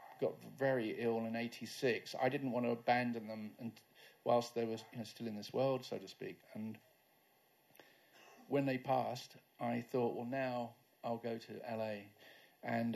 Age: 40-59